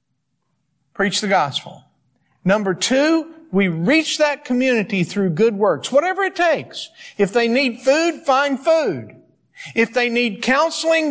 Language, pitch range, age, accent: English, 165-260 Hz, 50-69, American